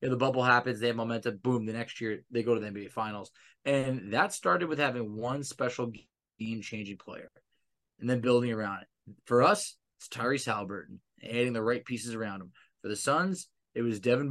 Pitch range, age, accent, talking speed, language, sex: 115-140 Hz, 20-39, American, 205 wpm, English, male